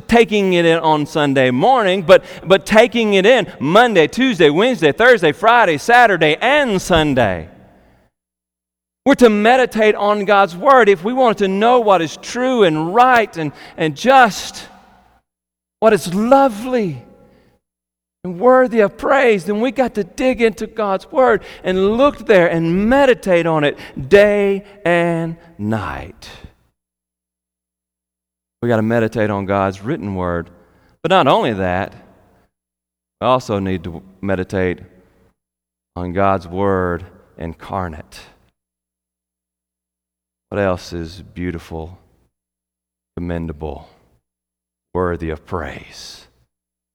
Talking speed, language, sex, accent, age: 120 wpm, English, male, American, 40-59